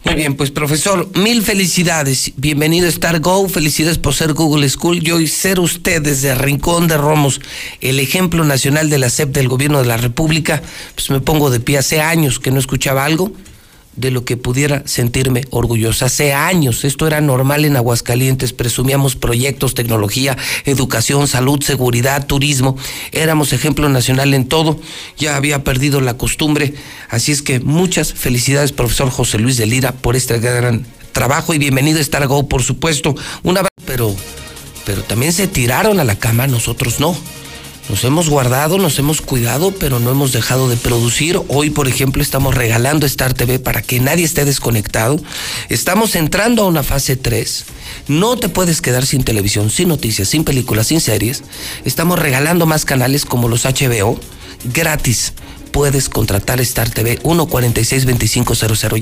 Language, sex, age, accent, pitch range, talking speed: Spanish, male, 50-69, Mexican, 125-155 Hz, 165 wpm